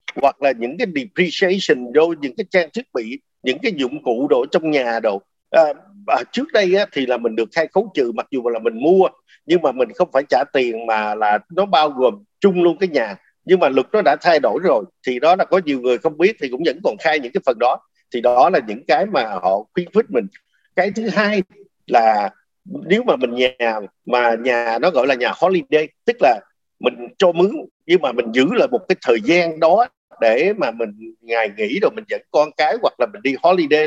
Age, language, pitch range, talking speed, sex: 50-69, Vietnamese, 140-225 Hz, 235 wpm, male